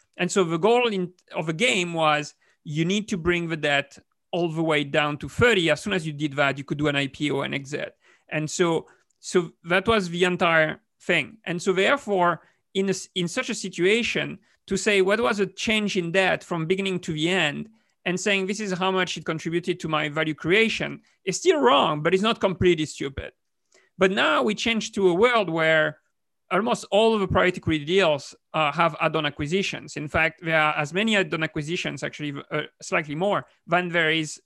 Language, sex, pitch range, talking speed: English, male, 155-190 Hz, 205 wpm